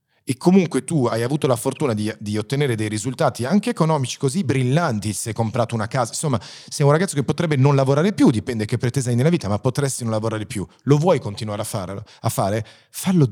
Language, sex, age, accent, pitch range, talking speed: Italian, male, 40-59, native, 110-150 Hz, 220 wpm